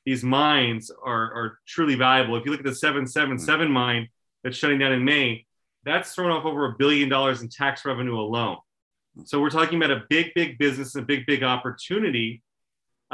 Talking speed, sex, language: 190 wpm, male, English